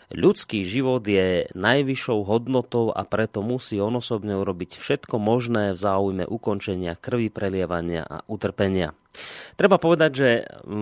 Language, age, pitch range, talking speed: Slovak, 30-49, 95-125 Hz, 130 wpm